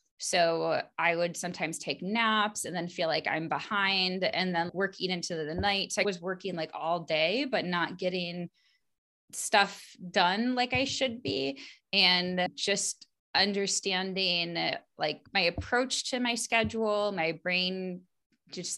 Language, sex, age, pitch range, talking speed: English, female, 20-39, 165-200 Hz, 145 wpm